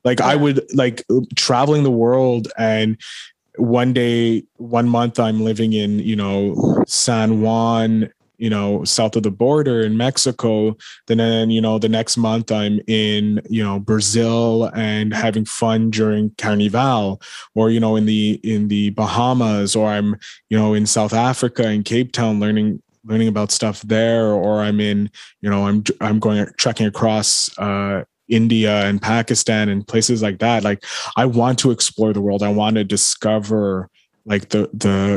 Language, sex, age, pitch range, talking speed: English, male, 20-39, 105-115 Hz, 165 wpm